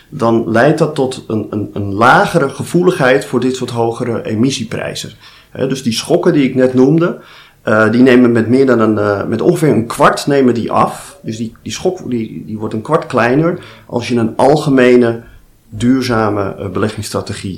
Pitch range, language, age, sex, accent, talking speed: 110-130 Hz, Dutch, 40-59, male, Dutch, 185 wpm